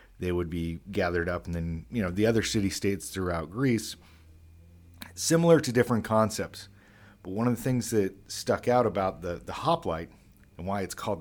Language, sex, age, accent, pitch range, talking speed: English, male, 40-59, American, 85-105 Hz, 180 wpm